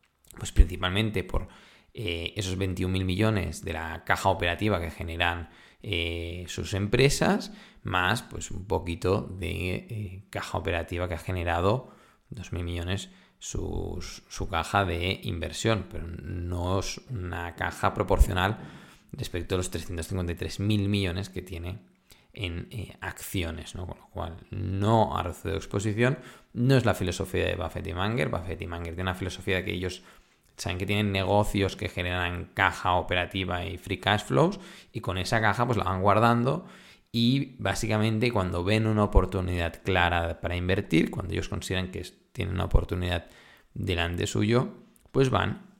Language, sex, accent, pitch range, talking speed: Spanish, male, Spanish, 90-110 Hz, 150 wpm